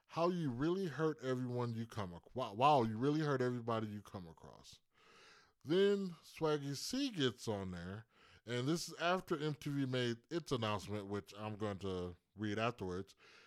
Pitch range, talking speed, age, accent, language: 90-135 Hz, 160 wpm, 20-39, American, English